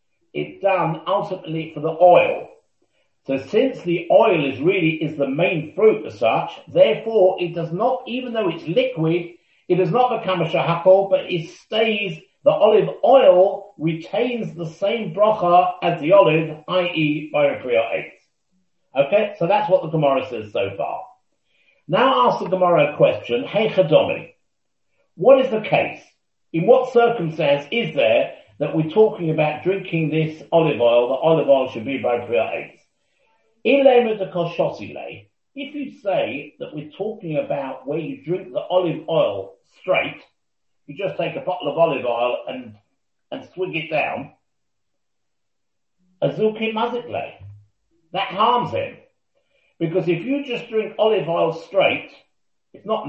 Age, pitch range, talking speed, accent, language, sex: 50-69, 155-215 Hz, 150 wpm, British, English, male